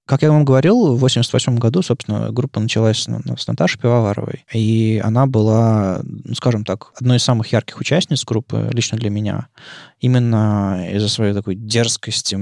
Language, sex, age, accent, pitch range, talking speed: Russian, male, 20-39, native, 105-130 Hz, 155 wpm